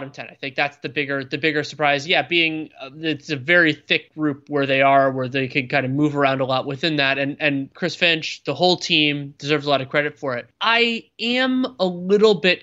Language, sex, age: English, male, 20-39